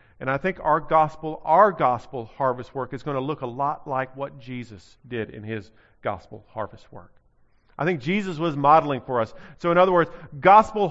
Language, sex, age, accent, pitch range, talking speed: English, male, 40-59, American, 165-225 Hz, 195 wpm